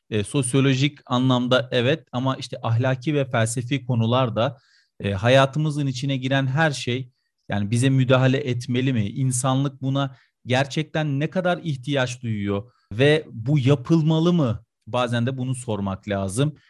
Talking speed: 125 wpm